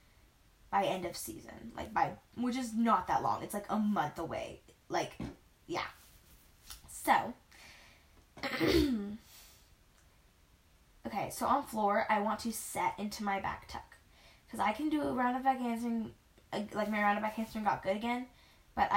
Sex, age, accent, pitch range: female, 10-29, American, 200-250 Hz